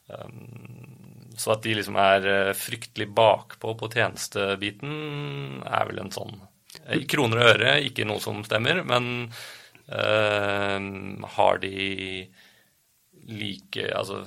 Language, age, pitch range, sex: English, 30-49, 95-115 Hz, male